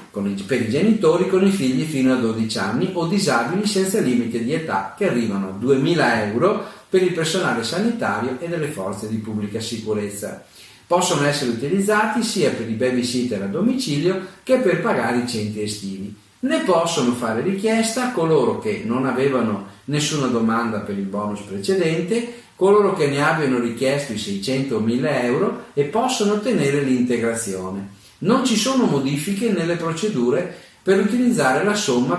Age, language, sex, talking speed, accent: 40-59, Italian, male, 155 wpm, native